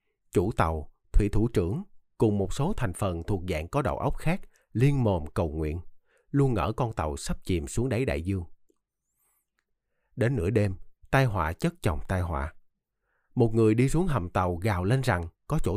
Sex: male